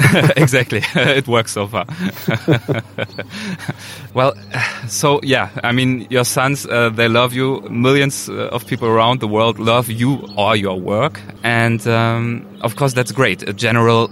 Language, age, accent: German, 20-39, German